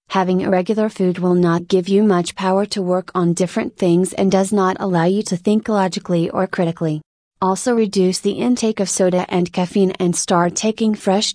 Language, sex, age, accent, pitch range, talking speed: English, female, 30-49, American, 180-200 Hz, 195 wpm